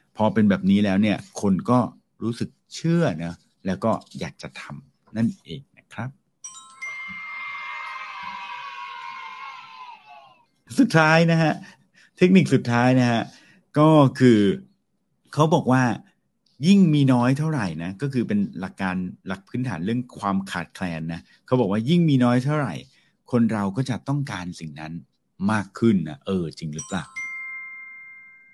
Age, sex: 60-79, male